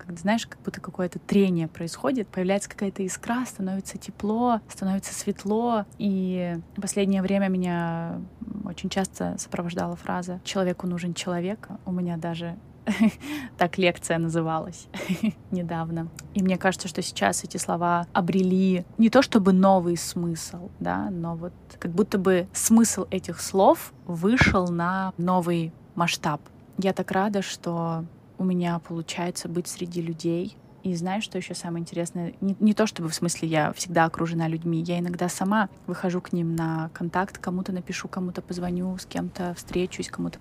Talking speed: 150 wpm